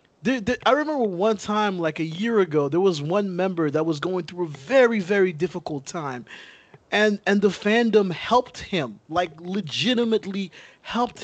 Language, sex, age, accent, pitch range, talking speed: English, male, 20-39, American, 150-195 Hz, 160 wpm